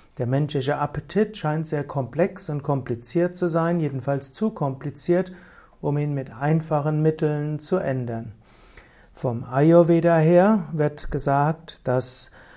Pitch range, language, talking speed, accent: 135-170 Hz, German, 125 wpm, German